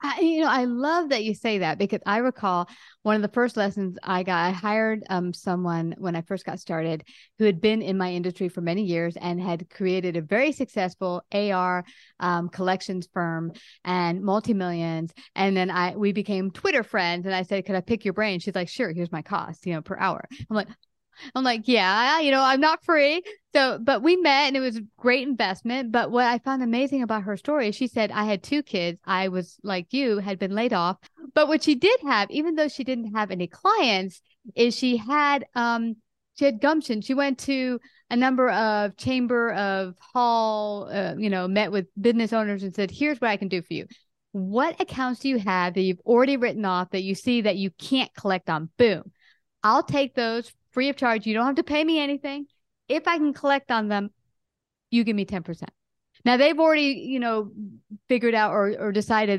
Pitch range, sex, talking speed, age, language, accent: 190-255 Hz, female, 215 wpm, 30-49, English, American